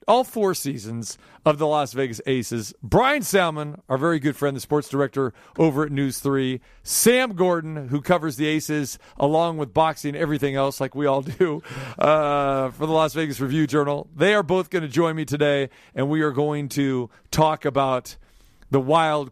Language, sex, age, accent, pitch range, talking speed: English, male, 40-59, American, 135-160 Hz, 185 wpm